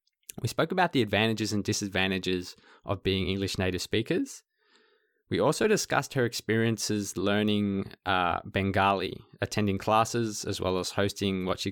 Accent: Australian